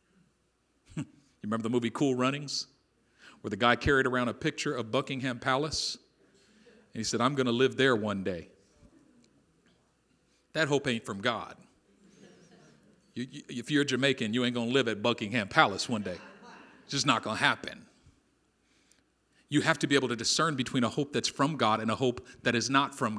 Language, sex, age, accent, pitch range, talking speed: English, male, 40-59, American, 120-150 Hz, 180 wpm